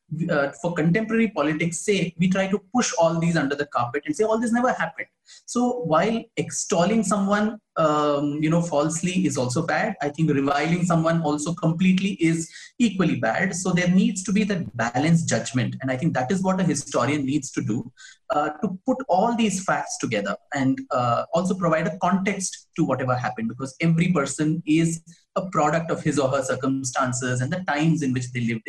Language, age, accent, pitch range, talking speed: English, 30-49, Indian, 140-185 Hz, 195 wpm